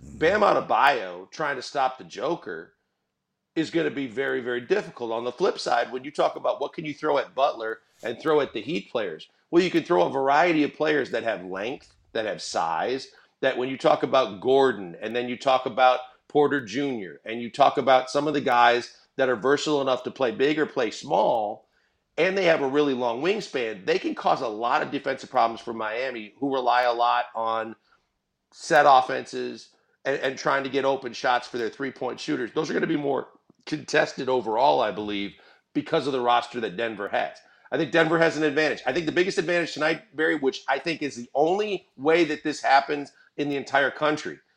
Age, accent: 40-59, American